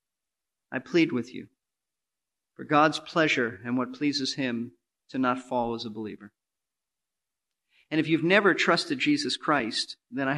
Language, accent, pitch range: English, American, 125-165 Hz